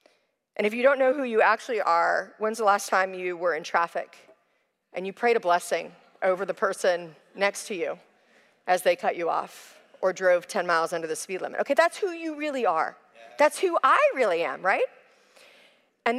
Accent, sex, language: American, female, English